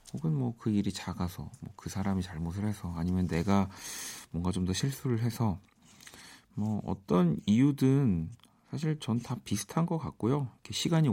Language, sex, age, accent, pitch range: Korean, male, 40-59, native, 90-125 Hz